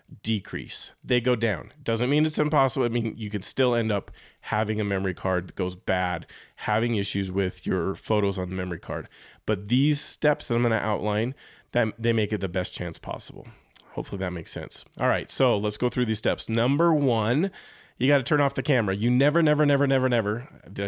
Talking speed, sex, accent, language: 215 wpm, male, American, English